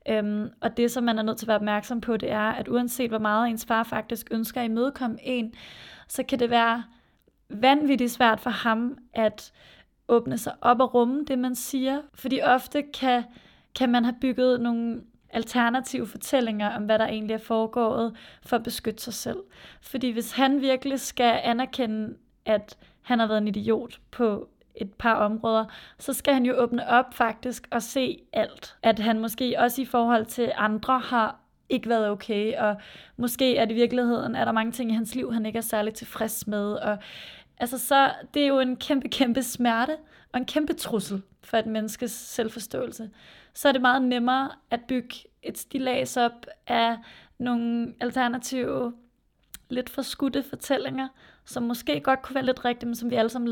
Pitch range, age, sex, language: 225-255 Hz, 30-49, female, Danish